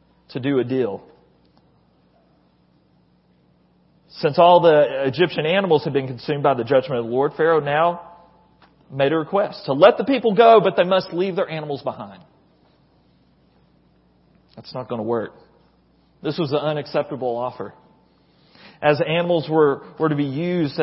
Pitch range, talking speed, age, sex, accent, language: 115-160 Hz, 150 wpm, 40-59, male, American, English